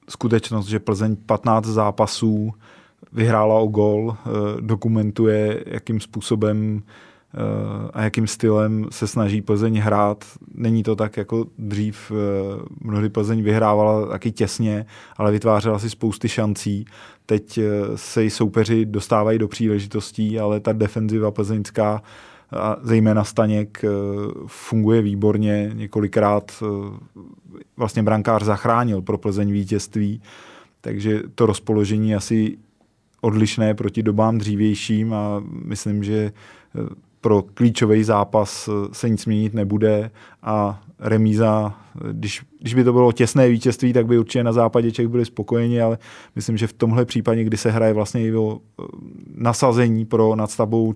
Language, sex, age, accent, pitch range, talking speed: Czech, male, 20-39, native, 105-115 Hz, 125 wpm